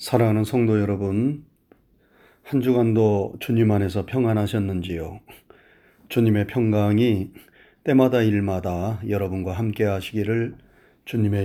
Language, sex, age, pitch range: Korean, male, 30-49, 100-125 Hz